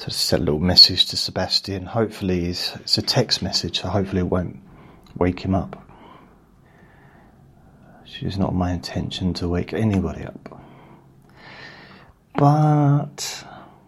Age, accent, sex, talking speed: 30-49, British, male, 125 wpm